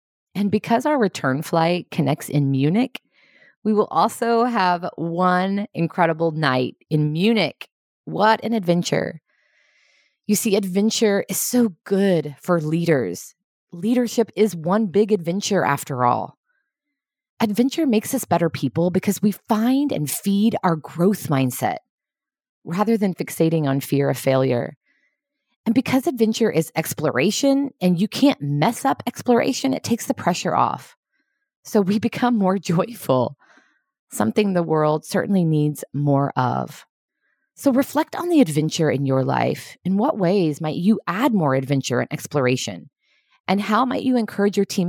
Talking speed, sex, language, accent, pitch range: 145 wpm, female, English, American, 155-230 Hz